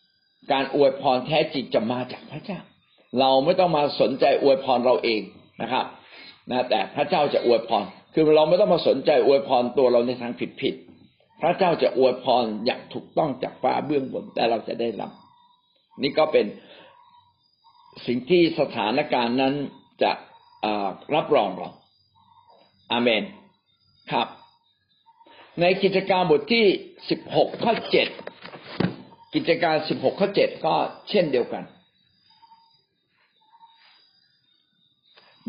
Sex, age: male, 60-79